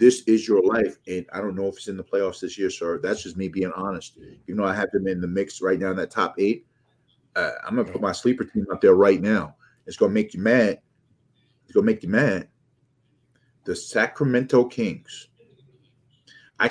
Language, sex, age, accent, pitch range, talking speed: English, male, 30-49, American, 110-135 Hz, 225 wpm